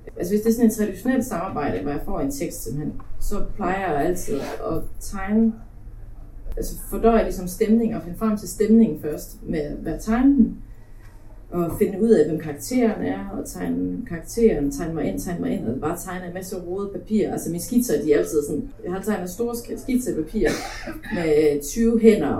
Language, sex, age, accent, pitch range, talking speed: Danish, female, 30-49, native, 150-220 Hz, 190 wpm